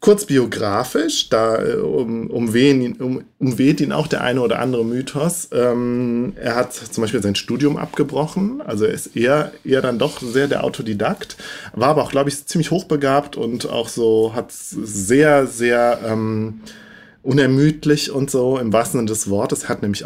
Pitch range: 115-145 Hz